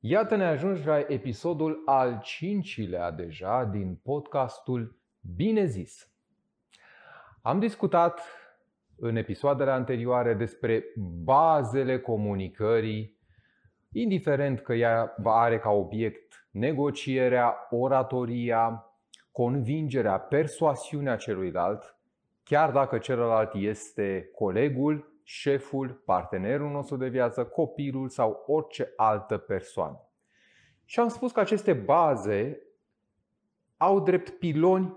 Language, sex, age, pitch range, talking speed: Romanian, male, 30-49, 120-160 Hz, 95 wpm